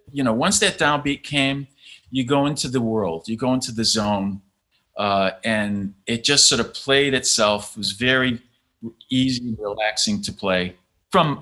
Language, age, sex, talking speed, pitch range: English, 40-59, male, 175 wpm, 105-130 Hz